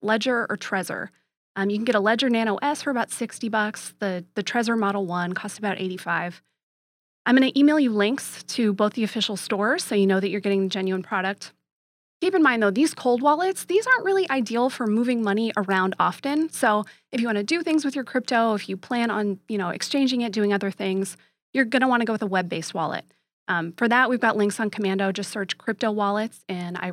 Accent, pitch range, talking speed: American, 195-245 Hz, 235 wpm